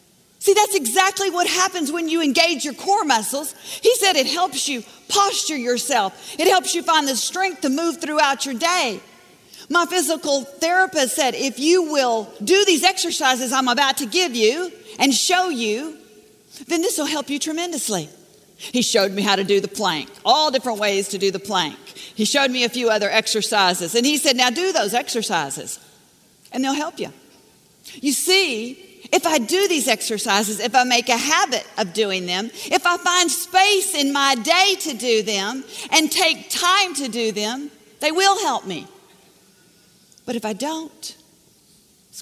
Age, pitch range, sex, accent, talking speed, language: 50-69, 220-335 Hz, female, American, 180 wpm, English